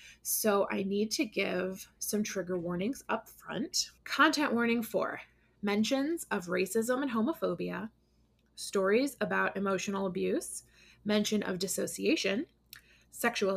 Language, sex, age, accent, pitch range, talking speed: English, female, 20-39, American, 190-235 Hz, 115 wpm